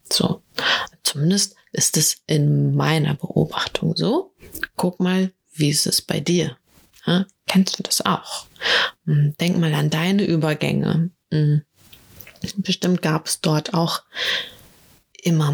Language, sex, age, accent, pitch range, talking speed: German, female, 20-39, German, 160-195 Hz, 120 wpm